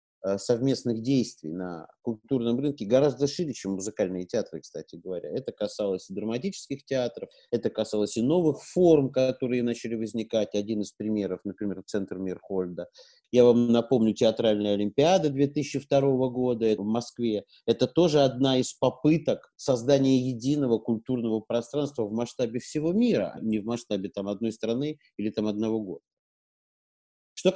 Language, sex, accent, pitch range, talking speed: Russian, male, native, 110-140 Hz, 135 wpm